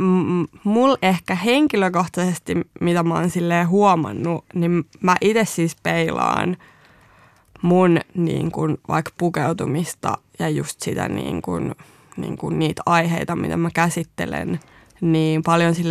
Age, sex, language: 20-39, female, Finnish